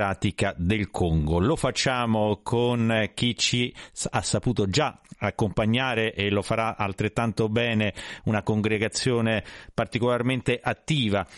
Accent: native